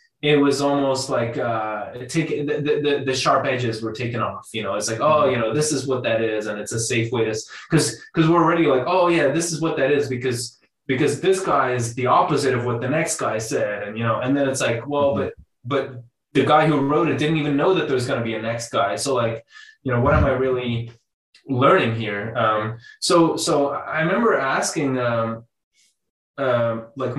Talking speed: 225 wpm